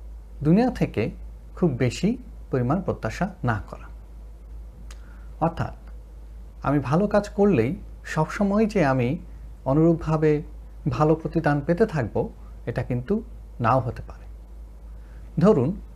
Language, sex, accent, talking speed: Bengali, male, native, 100 wpm